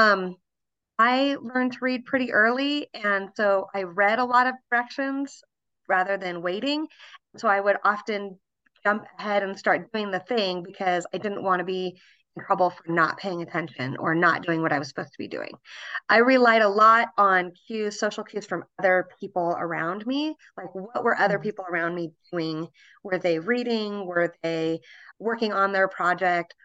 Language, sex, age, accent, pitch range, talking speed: English, female, 30-49, American, 175-220 Hz, 180 wpm